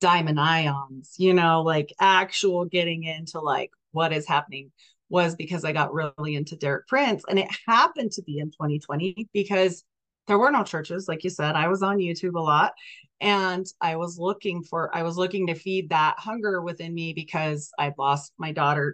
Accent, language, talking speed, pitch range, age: American, English, 190 wpm, 165-200 Hz, 30-49